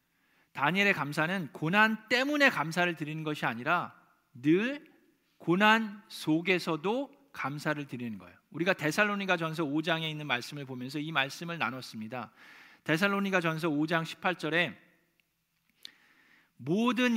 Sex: male